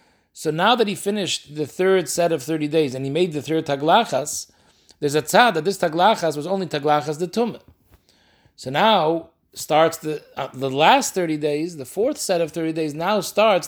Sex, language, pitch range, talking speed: male, English, 150-195 Hz, 195 wpm